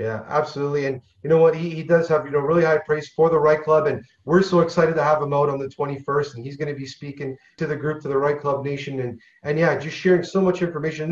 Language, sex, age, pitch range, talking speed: English, male, 30-49, 150-185 Hz, 285 wpm